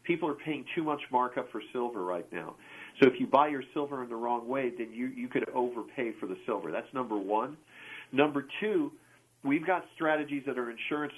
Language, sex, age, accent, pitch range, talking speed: English, male, 50-69, American, 125-160 Hz, 210 wpm